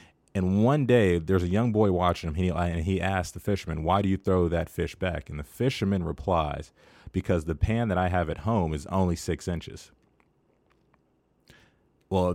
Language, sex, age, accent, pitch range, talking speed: English, male, 30-49, American, 85-105 Hz, 185 wpm